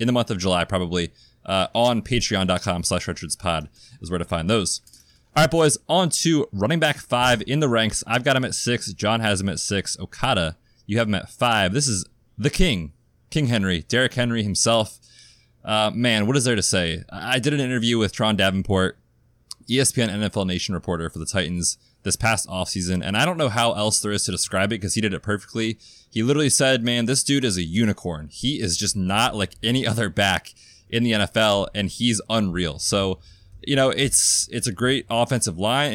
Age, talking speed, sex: 20-39, 205 wpm, male